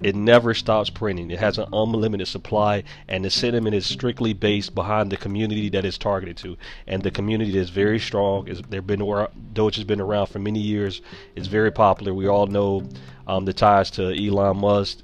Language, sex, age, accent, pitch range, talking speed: English, male, 40-59, American, 95-110 Hz, 190 wpm